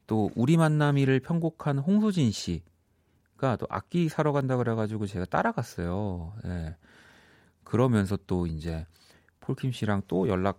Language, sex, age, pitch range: Korean, male, 30-49, 90-135 Hz